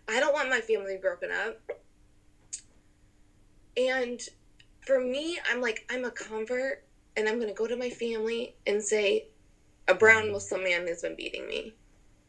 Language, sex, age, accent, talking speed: English, female, 20-39, American, 160 wpm